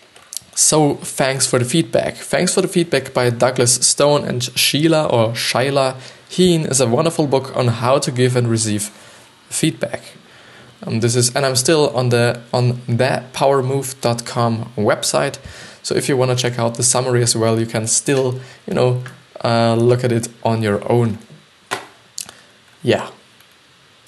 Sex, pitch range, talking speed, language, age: male, 115-135 Hz, 155 wpm, English, 20-39